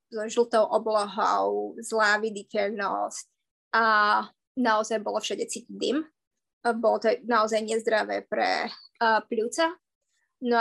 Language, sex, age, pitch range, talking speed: Slovak, female, 20-39, 215-250 Hz, 115 wpm